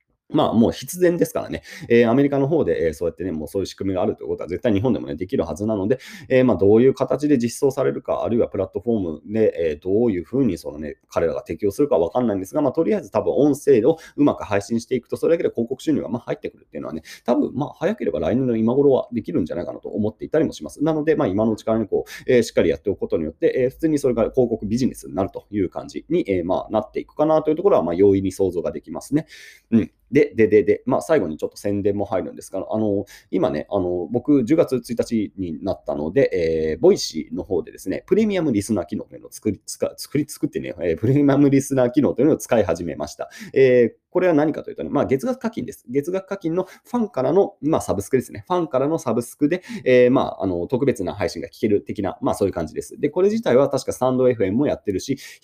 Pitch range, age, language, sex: 110-185 Hz, 30-49, Japanese, male